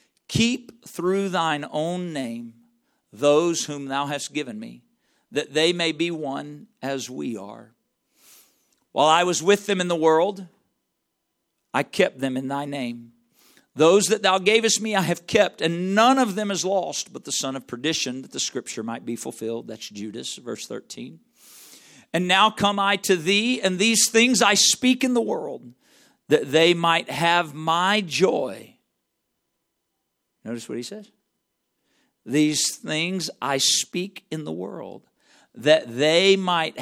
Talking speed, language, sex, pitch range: 155 wpm, English, male, 135-190 Hz